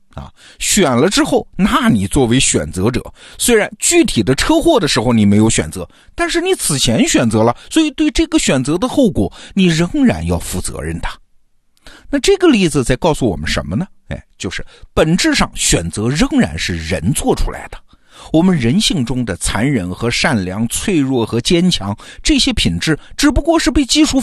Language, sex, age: Chinese, male, 50-69